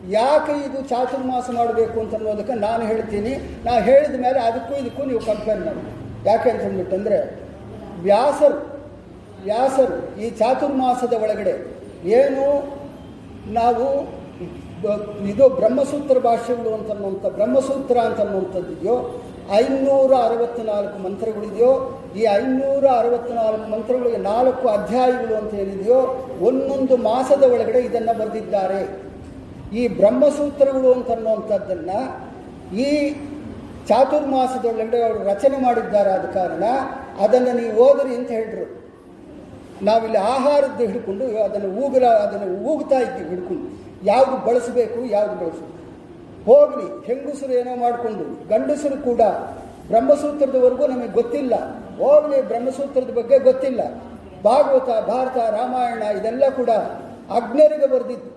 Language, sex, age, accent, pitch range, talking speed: English, male, 40-59, Indian, 220-270 Hz, 80 wpm